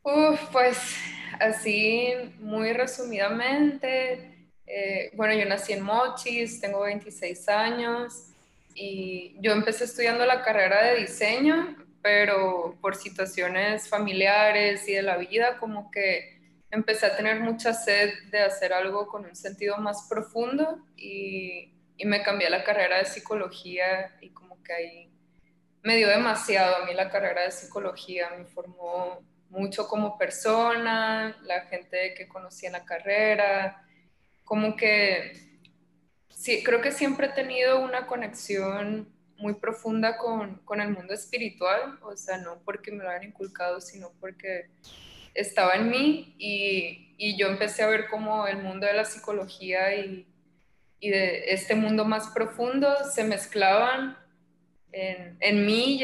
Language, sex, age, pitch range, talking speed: Spanish, female, 20-39, 190-225 Hz, 140 wpm